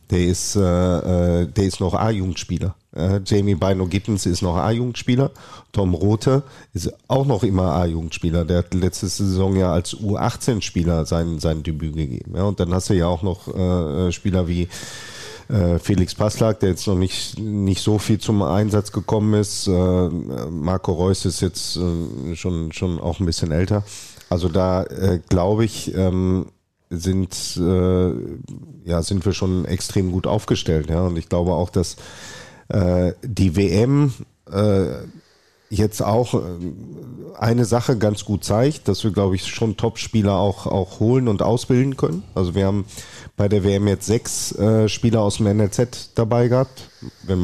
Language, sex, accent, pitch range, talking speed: German, male, German, 90-110 Hz, 155 wpm